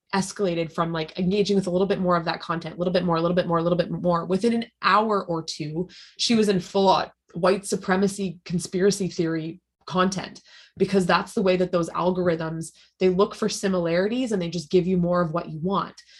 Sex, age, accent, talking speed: female, 20-39, American, 220 wpm